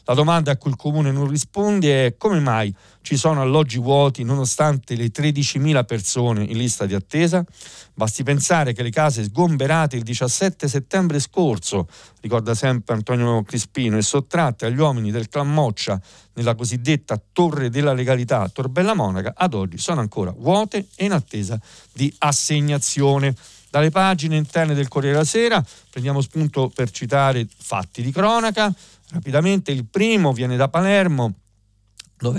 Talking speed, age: 150 wpm, 50-69